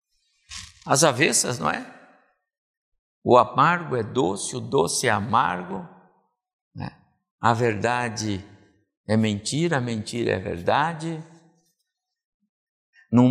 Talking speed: 100 wpm